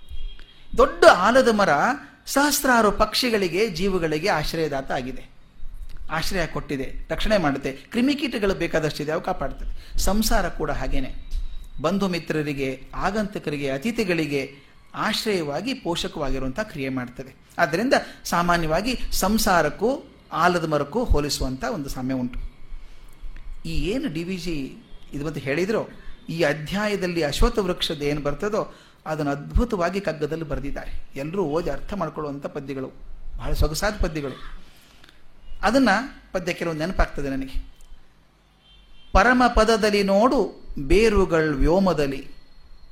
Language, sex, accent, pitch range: Kannada, male, native, 140-205 Hz